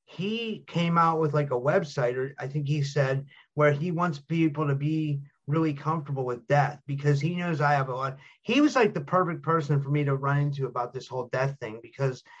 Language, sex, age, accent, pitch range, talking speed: English, male, 30-49, American, 140-160 Hz, 225 wpm